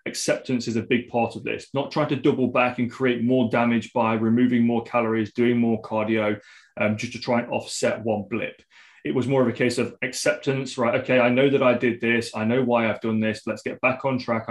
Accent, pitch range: British, 120-135 Hz